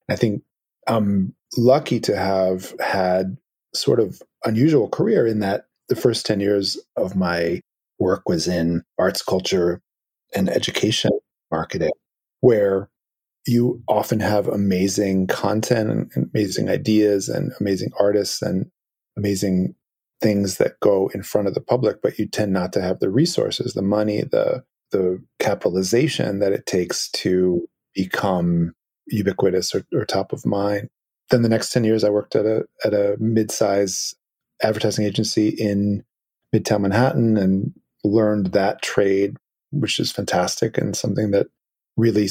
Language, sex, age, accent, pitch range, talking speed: English, male, 30-49, American, 95-110 Hz, 145 wpm